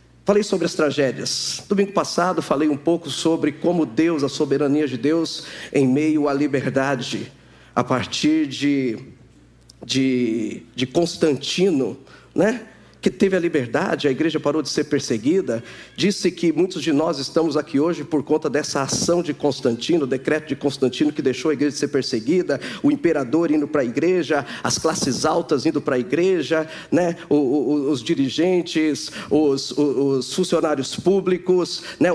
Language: Portuguese